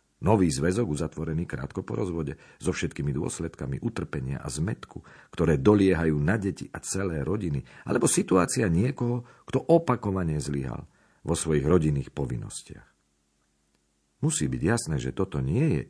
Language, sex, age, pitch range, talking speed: Slovak, male, 50-69, 70-100 Hz, 135 wpm